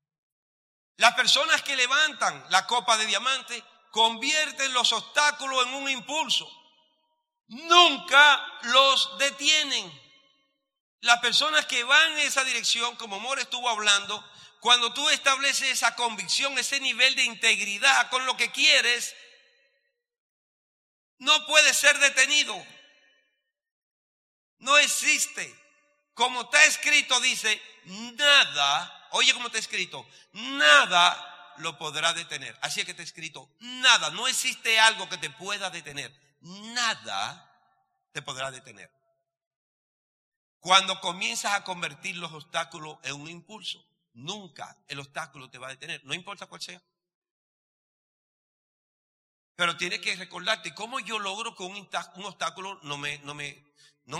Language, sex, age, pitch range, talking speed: Spanish, male, 50-69, 170-270 Hz, 120 wpm